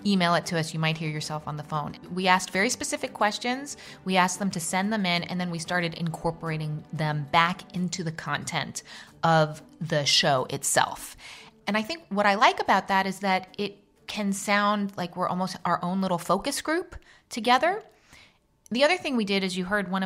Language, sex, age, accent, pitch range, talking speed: English, female, 20-39, American, 160-200 Hz, 205 wpm